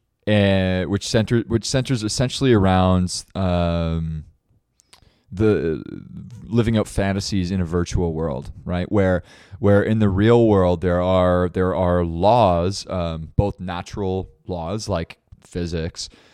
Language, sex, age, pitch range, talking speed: English, male, 20-39, 85-100 Hz, 125 wpm